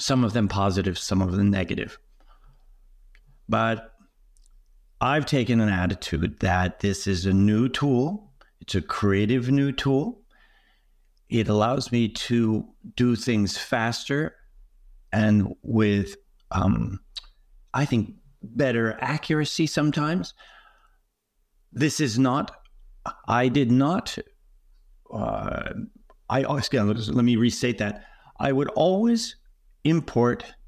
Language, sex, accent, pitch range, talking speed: English, male, American, 95-125 Hz, 110 wpm